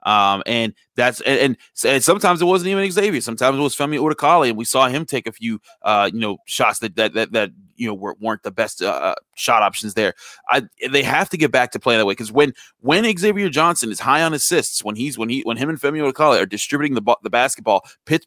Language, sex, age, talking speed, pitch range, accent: English, male, 30-49, 245 wpm, 115-145 Hz, American